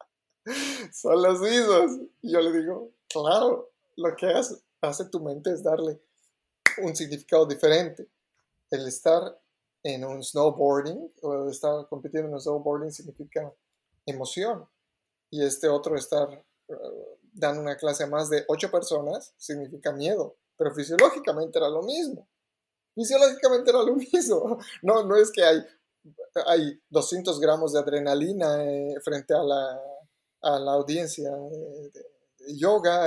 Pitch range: 145-220 Hz